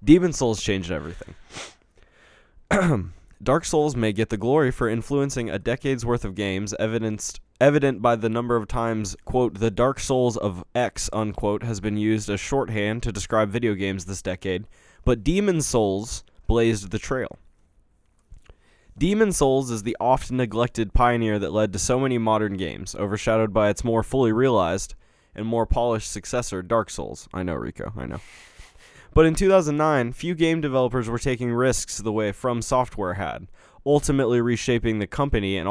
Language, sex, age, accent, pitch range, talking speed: English, male, 20-39, American, 100-125 Hz, 165 wpm